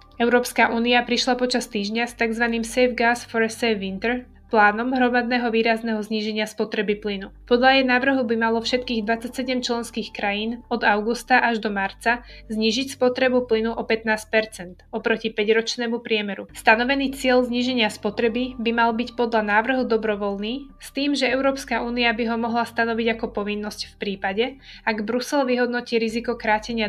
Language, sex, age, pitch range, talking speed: Slovak, female, 20-39, 220-245 Hz, 155 wpm